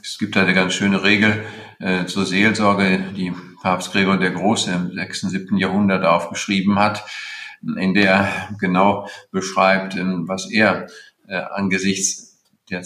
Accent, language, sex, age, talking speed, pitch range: German, German, male, 50-69, 130 wpm, 90-100 Hz